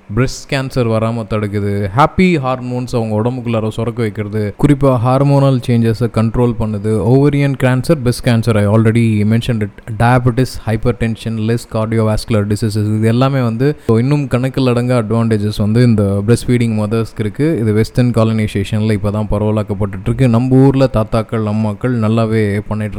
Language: Tamil